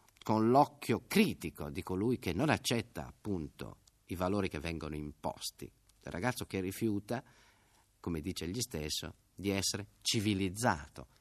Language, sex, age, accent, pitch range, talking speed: Italian, male, 50-69, native, 80-115 Hz, 135 wpm